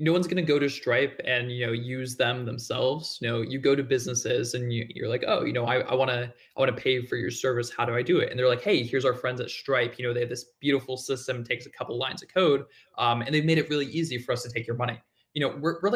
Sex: male